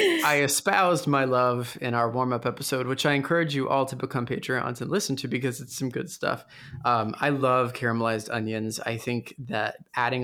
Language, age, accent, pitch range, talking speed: English, 20-39, American, 125-150 Hz, 195 wpm